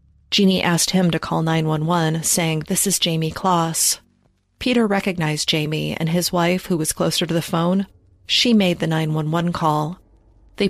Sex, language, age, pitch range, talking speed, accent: female, English, 30-49, 155-185 Hz, 165 wpm, American